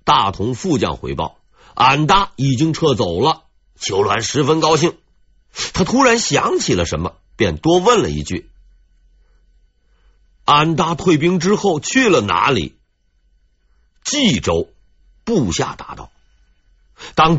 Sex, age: male, 50-69